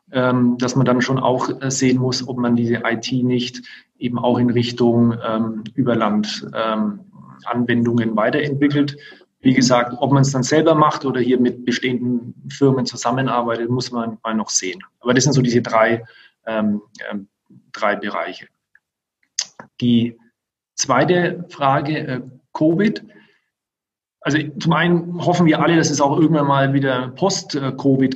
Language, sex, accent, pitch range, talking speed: German, male, German, 120-150 Hz, 140 wpm